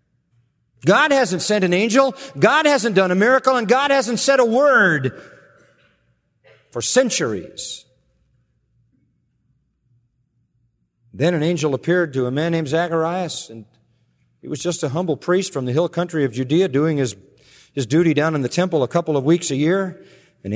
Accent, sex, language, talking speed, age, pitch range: American, male, English, 160 wpm, 40-59, 125-175 Hz